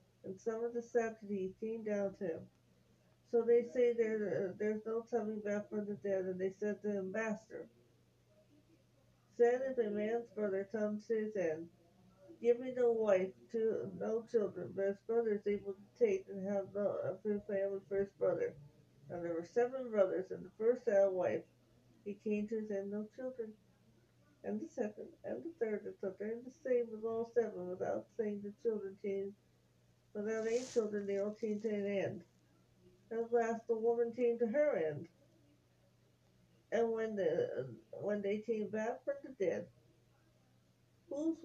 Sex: female